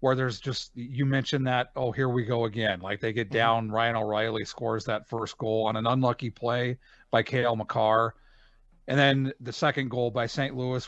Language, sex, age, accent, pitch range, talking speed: English, male, 40-59, American, 115-140 Hz, 200 wpm